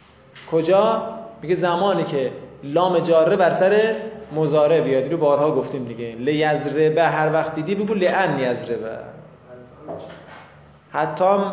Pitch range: 140-180 Hz